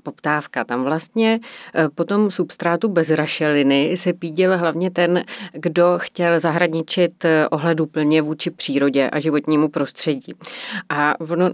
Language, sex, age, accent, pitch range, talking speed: Czech, female, 30-49, native, 155-180 Hz, 120 wpm